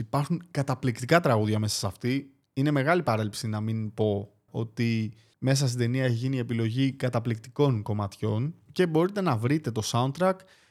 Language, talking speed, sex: Greek, 155 wpm, male